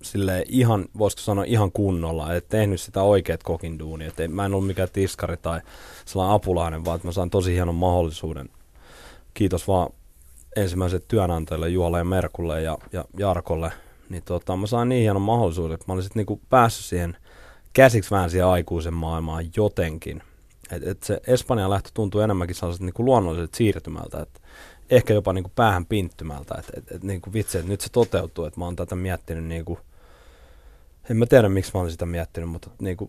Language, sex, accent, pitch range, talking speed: Finnish, male, native, 85-100 Hz, 175 wpm